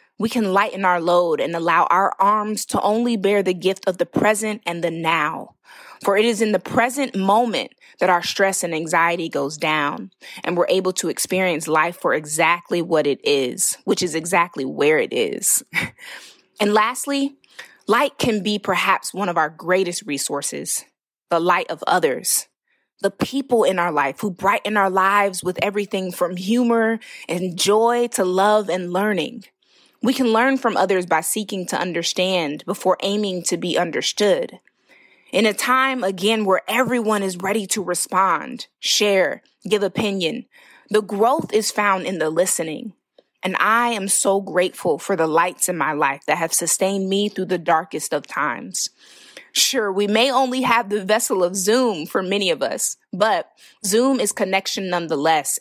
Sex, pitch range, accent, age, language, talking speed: female, 180-230 Hz, American, 20-39, English, 170 wpm